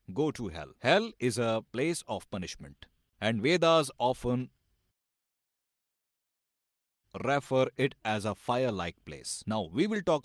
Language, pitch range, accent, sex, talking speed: Hindi, 90-135 Hz, native, male, 130 wpm